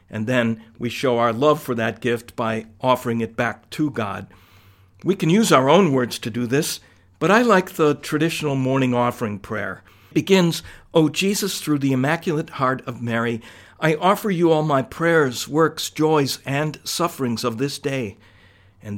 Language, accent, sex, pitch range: English, American, male, 120-155 Hz